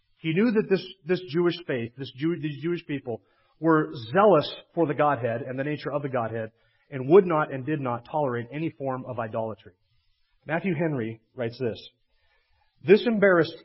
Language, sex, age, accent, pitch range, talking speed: English, male, 40-59, American, 125-180 Hz, 175 wpm